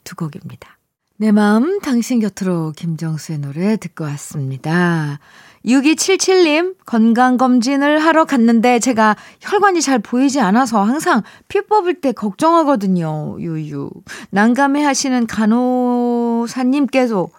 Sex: female